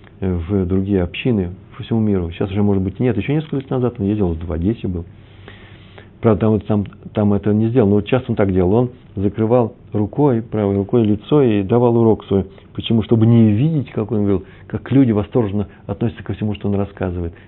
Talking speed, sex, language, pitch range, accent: 205 wpm, male, Russian, 95-115 Hz, native